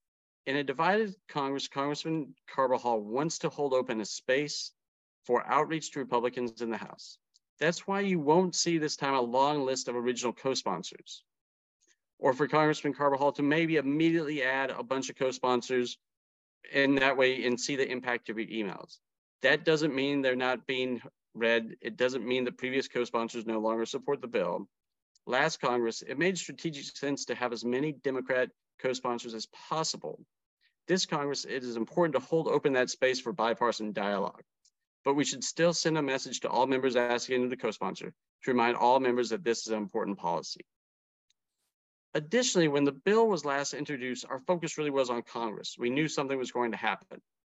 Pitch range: 120-150 Hz